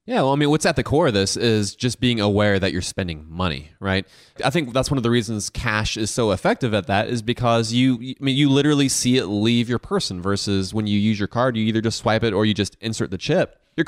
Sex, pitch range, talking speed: male, 100-130 Hz, 270 wpm